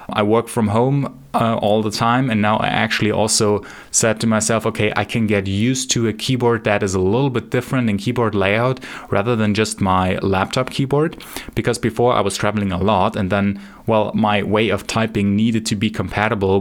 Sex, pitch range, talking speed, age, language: male, 100-120 Hz, 205 wpm, 20-39, English